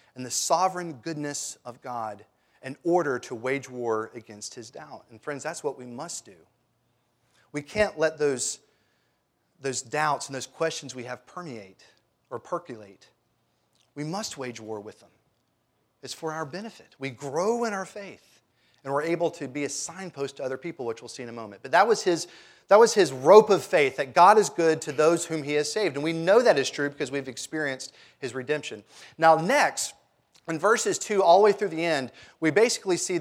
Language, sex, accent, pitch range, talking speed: English, male, American, 135-185 Hz, 195 wpm